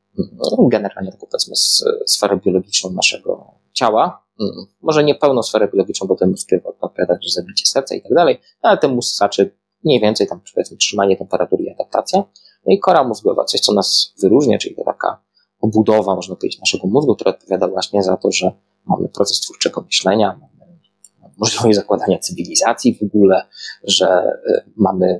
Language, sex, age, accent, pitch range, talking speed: Polish, male, 20-39, native, 100-150 Hz, 160 wpm